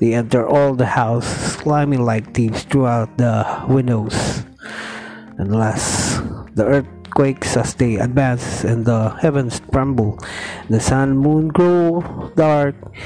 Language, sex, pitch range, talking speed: Filipino, male, 110-130 Hz, 120 wpm